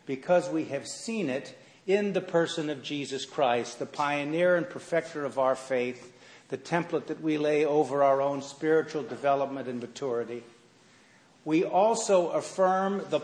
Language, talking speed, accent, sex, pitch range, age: English, 155 wpm, American, male, 140-170 Hz, 50-69